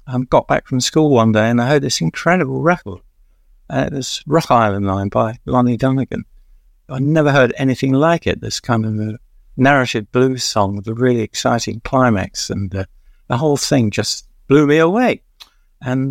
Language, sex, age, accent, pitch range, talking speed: English, male, 60-79, British, 105-140 Hz, 190 wpm